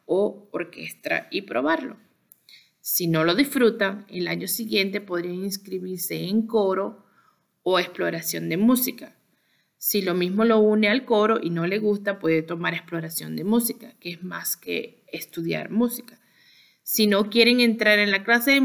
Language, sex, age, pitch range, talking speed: Spanish, female, 30-49, 170-215 Hz, 160 wpm